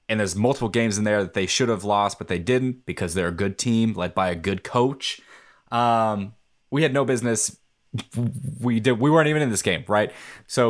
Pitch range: 105-135 Hz